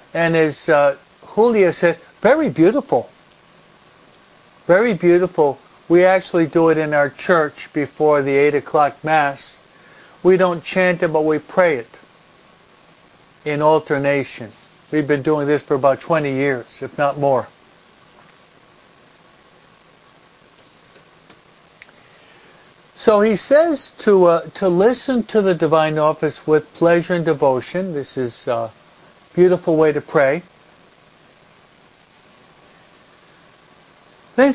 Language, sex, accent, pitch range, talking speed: English, male, American, 150-185 Hz, 115 wpm